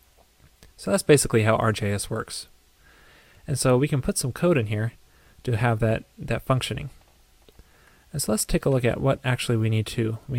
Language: English